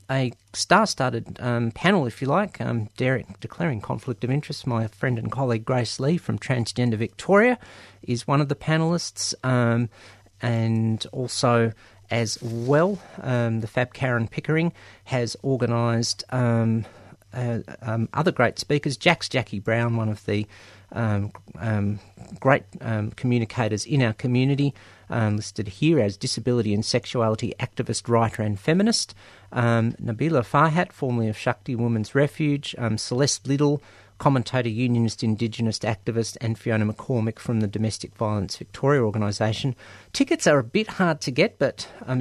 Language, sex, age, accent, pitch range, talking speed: English, male, 40-59, Australian, 110-135 Hz, 140 wpm